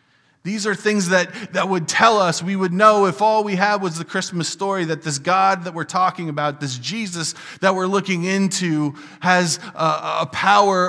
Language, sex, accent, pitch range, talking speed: English, male, American, 145-190 Hz, 200 wpm